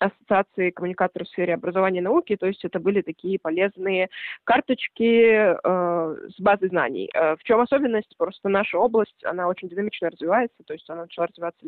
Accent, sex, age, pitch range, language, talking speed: native, female, 20-39, 180-215 Hz, Russian, 175 wpm